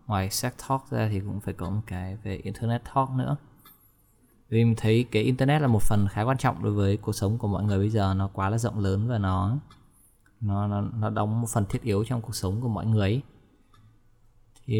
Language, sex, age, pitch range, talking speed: Vietnamese, male, 20-39, 100-125 Hz, 225 wpm